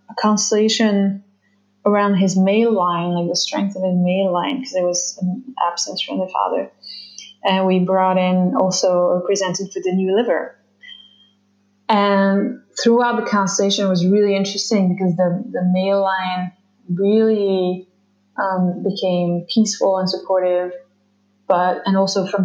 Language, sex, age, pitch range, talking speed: English, female, 20-39, 185-215 Hz, 140 wpm